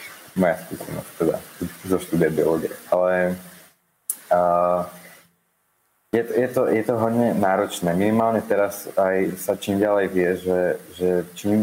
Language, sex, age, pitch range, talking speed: Slovak, male, 30-49, 85-95 Hz, 135 wpm